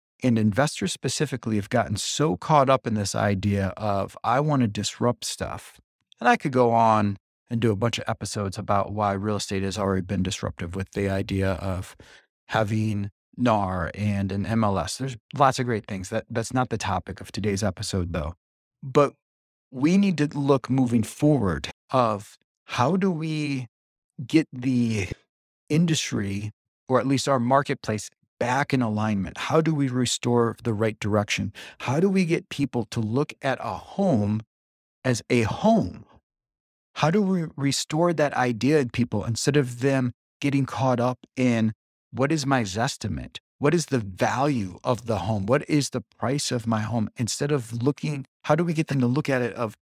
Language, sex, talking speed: English, male, 175 wpm